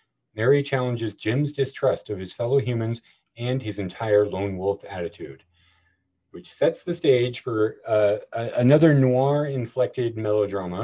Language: English